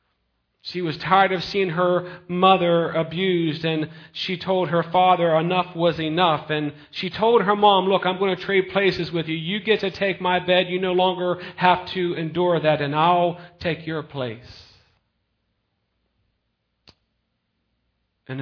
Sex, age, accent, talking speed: male, 40-59, American, 155 wpm